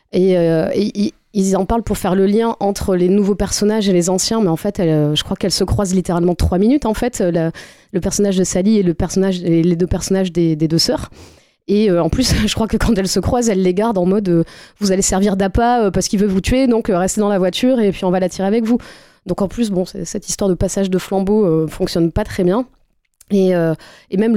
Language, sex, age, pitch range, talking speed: French, female, 20-39, 175-205 Hz, 265 wpm